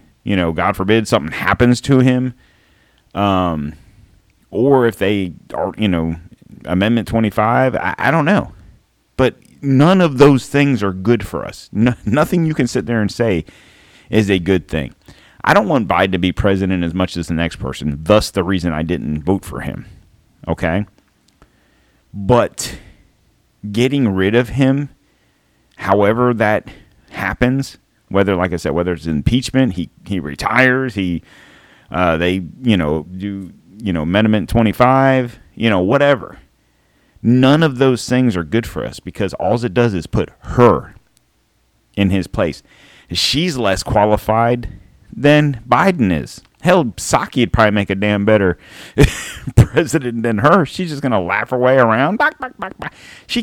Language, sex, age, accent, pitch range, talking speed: English, male, 40-59, American, 90-125 Hz, 155 wpm